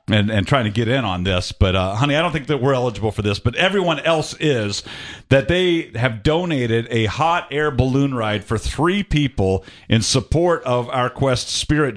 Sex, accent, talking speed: male, American, 205 wpm